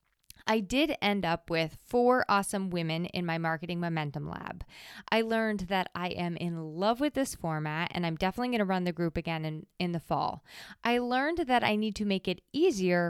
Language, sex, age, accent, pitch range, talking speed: English, female, 20-39, American, 170-220 Hz, 200 wpm